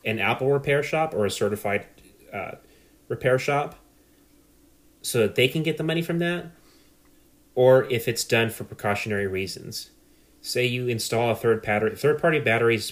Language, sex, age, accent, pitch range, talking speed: English, male, 30-49, American, 100-120 Hz, 165 wpm